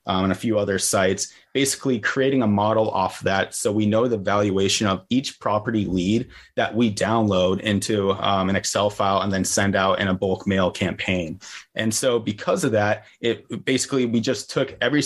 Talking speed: 190 wpm